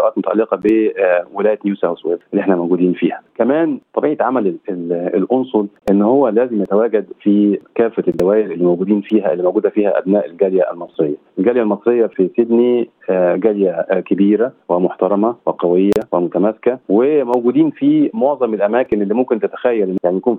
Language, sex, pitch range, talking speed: Arabic, male, 95-120 Hz, 140 wpm